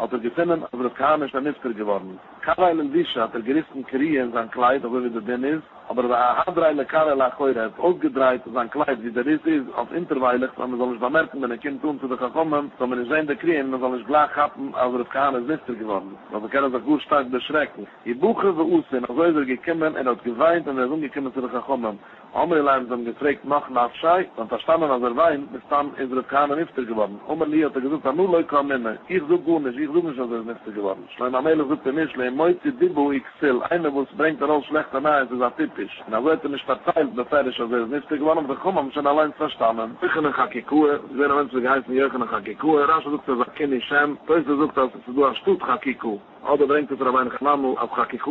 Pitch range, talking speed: 125-155 Hz, 45 wpm